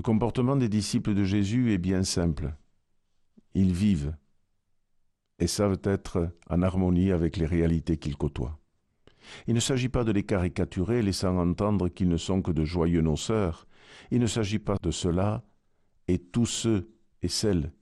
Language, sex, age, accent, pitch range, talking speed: French, male, 50-69, French, 80-100 Hz, 160 wpm